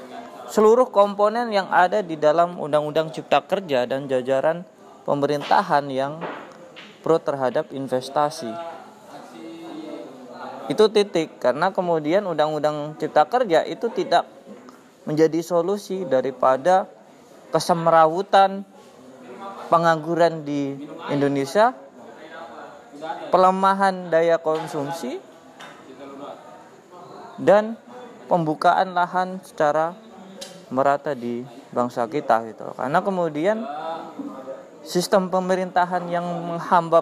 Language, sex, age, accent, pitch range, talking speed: Indonesian, male, 20-39, native, 140-185 Hz, 80 wpm